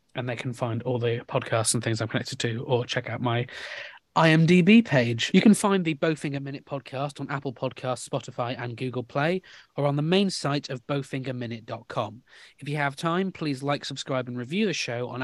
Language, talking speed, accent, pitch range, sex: English, 200 wpm, British, 120-150 Hz, male